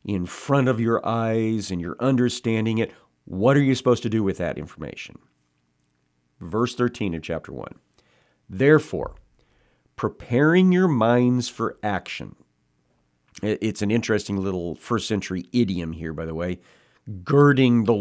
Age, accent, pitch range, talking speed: 50-69, American, 95-120 Hz, 140 wpm